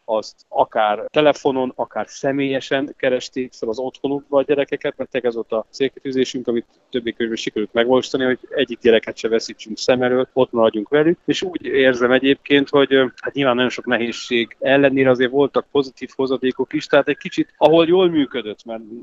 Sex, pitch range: male, 115-140 Hz